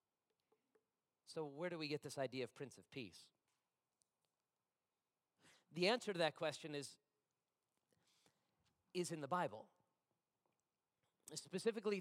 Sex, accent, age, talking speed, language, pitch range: male, American, 40-59, 110 wpm, English, 145-210 Hz